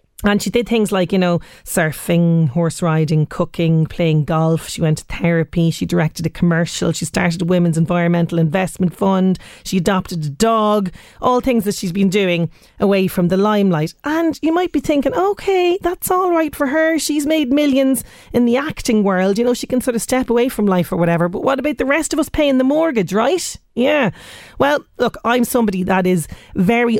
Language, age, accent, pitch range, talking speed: English, 30-49, Irish, 175-245 Hz, 200 wpm